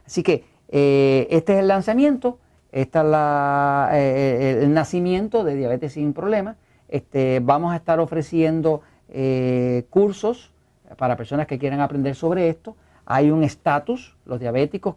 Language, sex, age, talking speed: Spanish, male, 40-59, 145 wpm